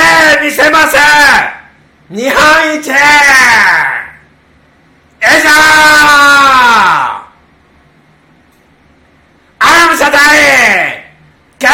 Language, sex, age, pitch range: Japanese, male, 40-59, 255-310 Hz